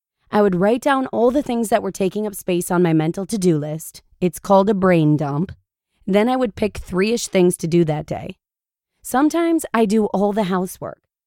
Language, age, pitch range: English, 20-39, 180-250 Hz